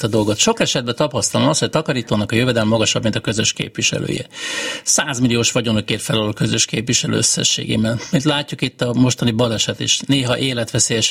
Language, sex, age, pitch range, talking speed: Hungarian, male, 60-79, 115-150 Hz, 175 wpm